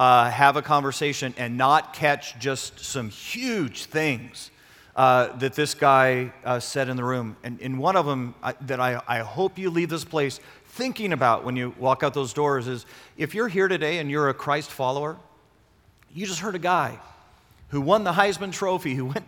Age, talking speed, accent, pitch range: 40-59, 195 wpm, American, 140-195 Hz